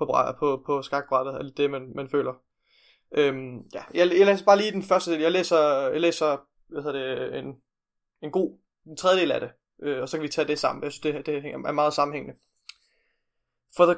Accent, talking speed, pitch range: native, 200 wpm, 140-165 Hz